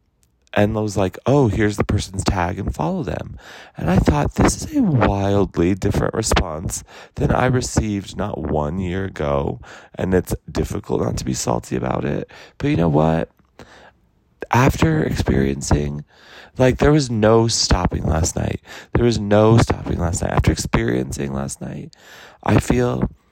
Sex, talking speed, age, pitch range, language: male, 160 wpm, 30-49, 85-110 Hz, English